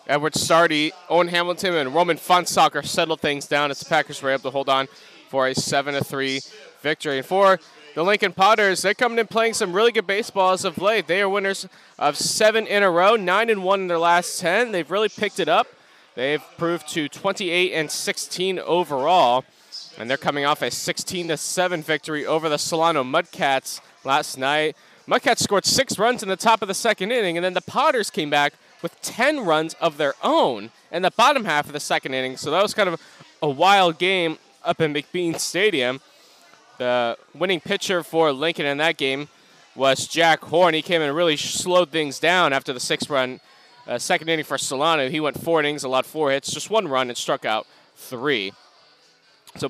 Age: 20-39